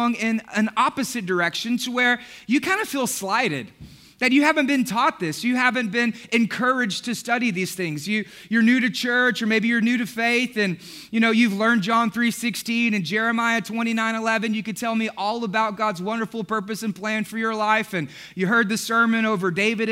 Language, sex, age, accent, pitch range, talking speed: English, male, 20-39, American, 200-240 Hz, 200 wpm